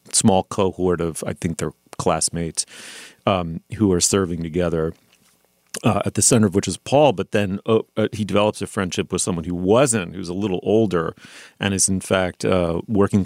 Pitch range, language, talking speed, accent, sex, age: 85-120 Hz, English, 185 wpm, American, male, 40-59